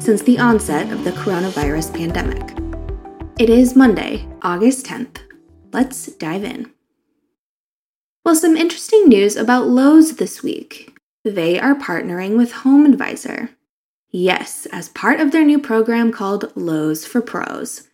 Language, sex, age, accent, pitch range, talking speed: English, female, 20-39, American, 195-275 Hz, 130 wpm